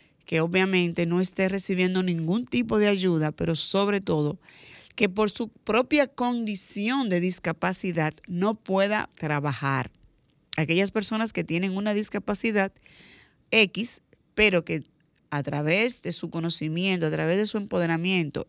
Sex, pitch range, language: female, 170-210 Hz, Spanish